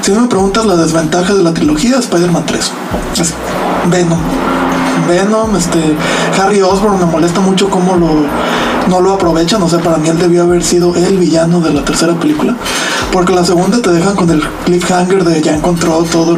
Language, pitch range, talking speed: Spanish, 170-200 Hz, 185 wpm